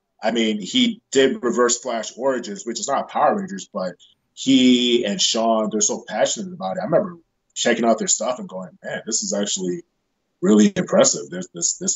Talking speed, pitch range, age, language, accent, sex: 180 wpm, 110-180 Hz, 20-39, English, American, male